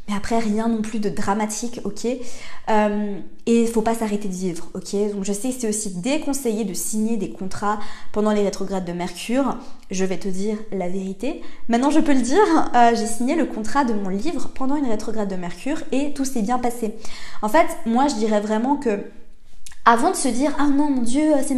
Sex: female